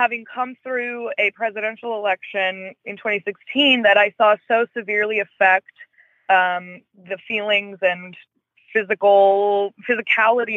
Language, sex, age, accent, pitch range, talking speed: English, female, 20-39, American, 185-235 Hz, 115 wpm